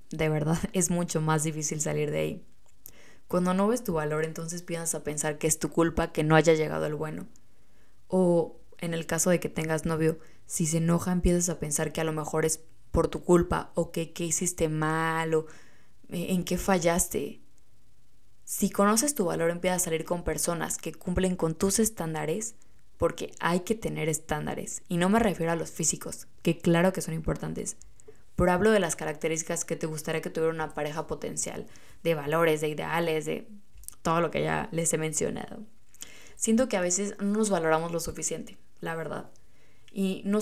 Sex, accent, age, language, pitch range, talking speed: female, Mexican, 20-39, Spanish, 160-185 Hz, 190 wpm